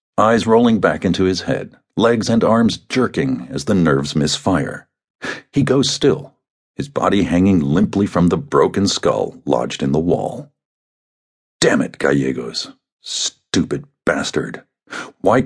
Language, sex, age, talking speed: English, male, 50-69, 135 wpm